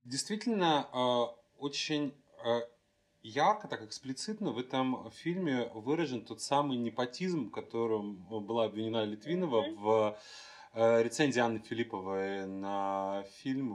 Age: 30-49